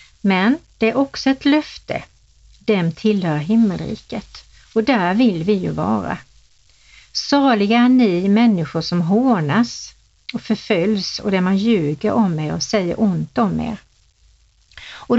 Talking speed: 135 wpm